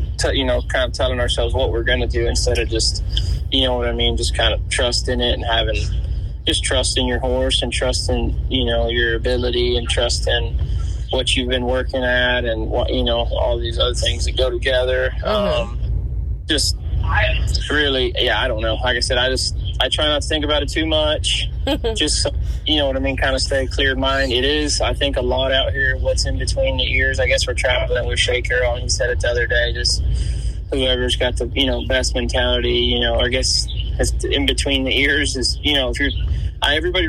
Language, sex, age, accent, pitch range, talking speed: English, male, 20-39, American, 95-125 Hz, 220 wpm